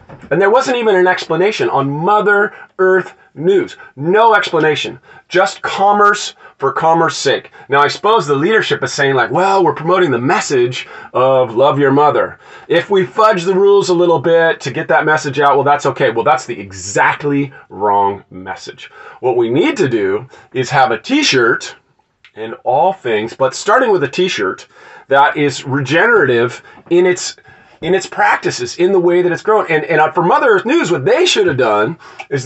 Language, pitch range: English, 140-215 Hz